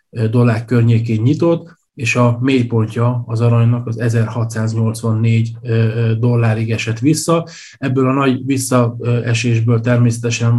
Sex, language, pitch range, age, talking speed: male, Hungarian, 120-130 Hz, 20-39, 100 wpm